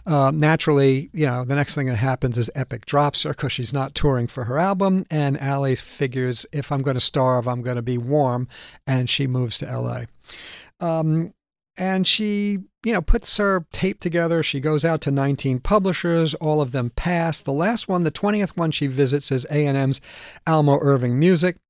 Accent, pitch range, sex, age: American, 135-170 Hz, male, 50-69